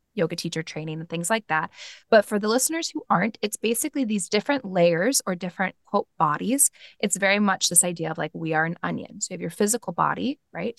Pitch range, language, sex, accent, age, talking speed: 175-220 Hz, English, female, American, 20-39, 220 wpm